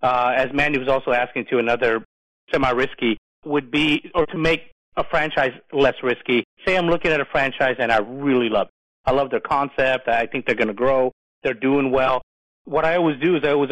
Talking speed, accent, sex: 215 wpm, American, male